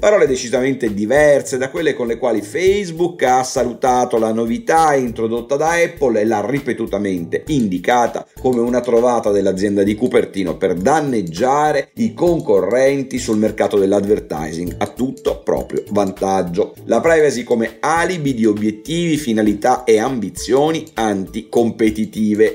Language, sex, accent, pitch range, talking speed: Italian, male, native, 110-150 Hz, 125 wpm